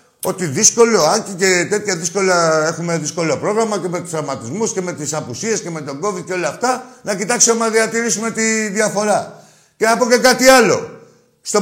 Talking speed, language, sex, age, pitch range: 185 wpm, Greek, male, 50-69, 140-210 Hz